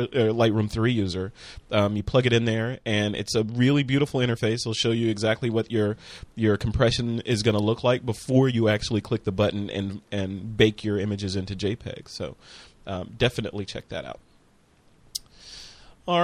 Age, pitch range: 30-49, 110-130 Hz